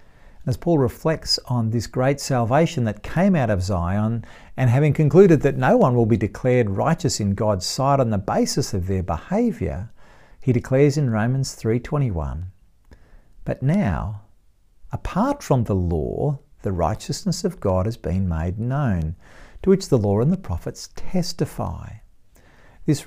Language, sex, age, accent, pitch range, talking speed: English, male, 50-69, Australian, 100-150 Hz, 155 wpm